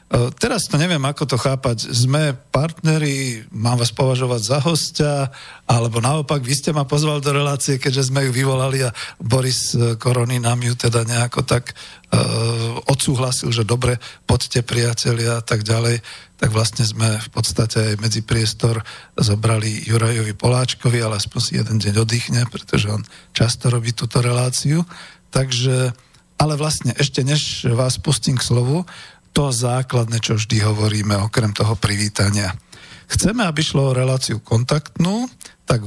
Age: 50-69